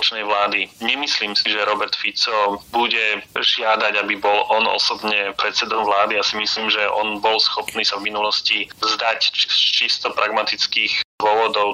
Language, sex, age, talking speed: Slovak, male, 30-49, 150 wpm